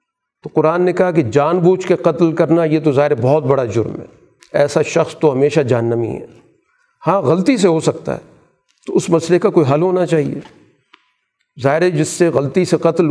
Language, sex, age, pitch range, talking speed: Urdu, male, 50-69, 145-180 Hz, 195 wpm